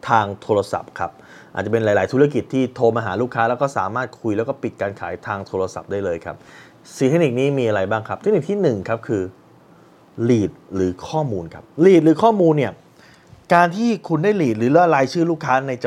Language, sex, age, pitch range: Thai, male, 20-39, 105-150 Hz